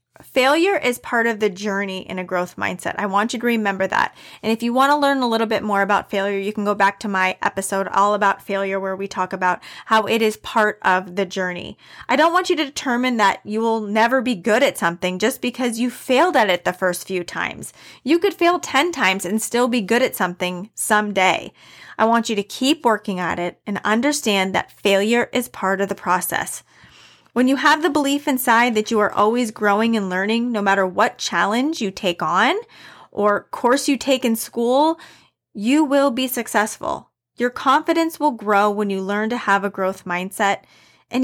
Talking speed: 210 wpm